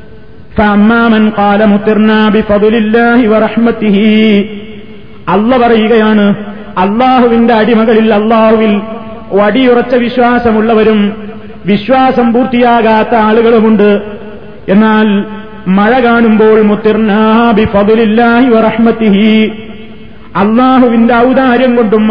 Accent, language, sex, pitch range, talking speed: native, Malayalam, male, 215-235 Hz, 45 wpm